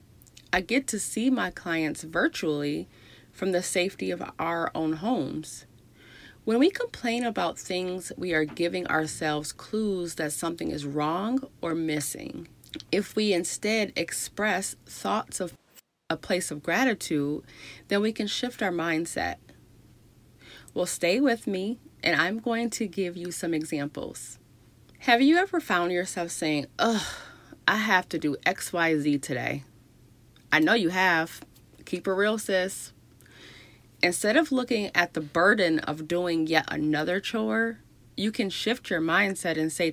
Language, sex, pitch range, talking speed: English, female, 150-200 Hz, 150 wpm